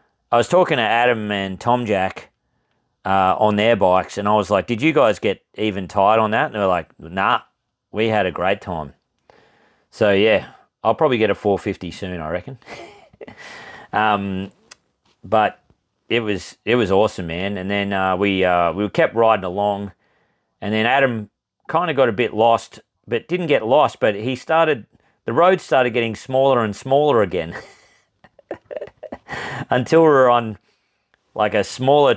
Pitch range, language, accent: 95-115 Hz, English, Australian